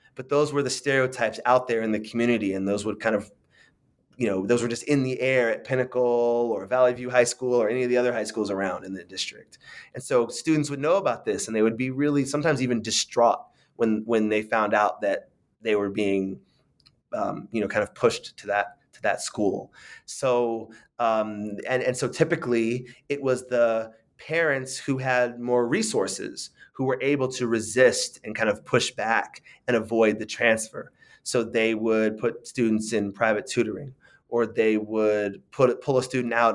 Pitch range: 110-130 Hz